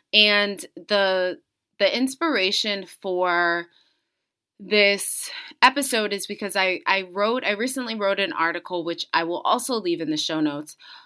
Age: 20-39